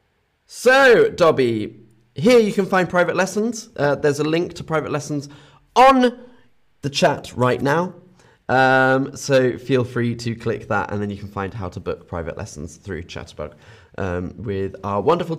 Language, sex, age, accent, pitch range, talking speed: English, male, 20-39, British, 110-165 Hz, 165 wpm